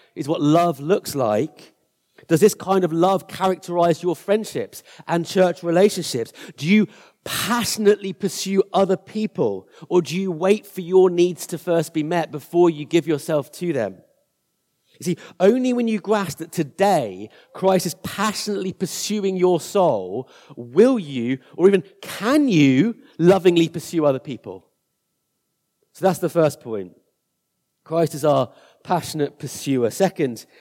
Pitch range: 145-190 Hz